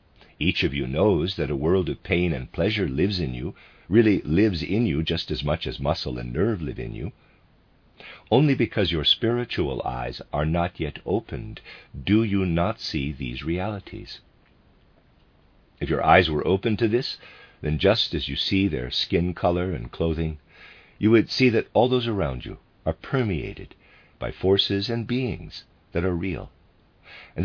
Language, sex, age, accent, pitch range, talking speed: English, male, 50-69, American, 80-100 Hz, 170 wpm